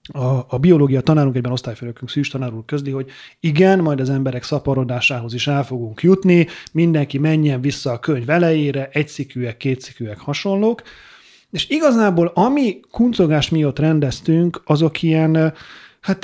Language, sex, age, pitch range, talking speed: Hungarian, male, 30-49, 125-155 Hz, 135 wpm